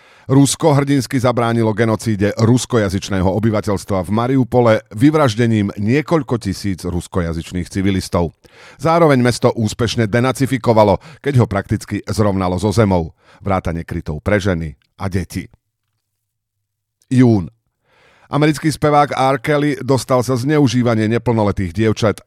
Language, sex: Slovak, male